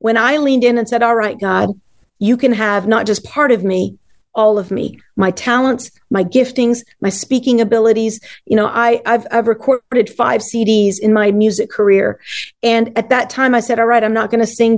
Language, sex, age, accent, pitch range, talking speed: English, female, 40-59, American, 210-240 Hz, 205 wpm